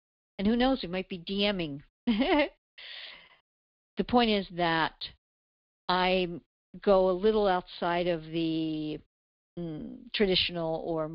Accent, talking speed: American, 115 wpm